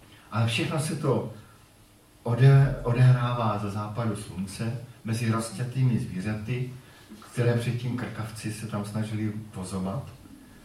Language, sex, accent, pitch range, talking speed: Czech, male, native, 100-125 Hz, 100 wpm